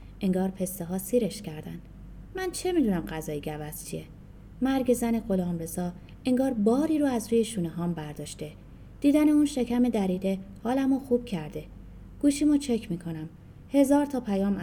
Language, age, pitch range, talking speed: Persian, 30-49, 165-255 Hz, 155 wpm